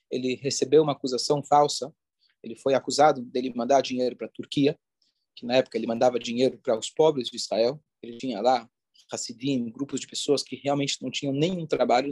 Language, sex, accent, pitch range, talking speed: Portuguese, male, Brazilian, 130-175 Hz, 195 wpm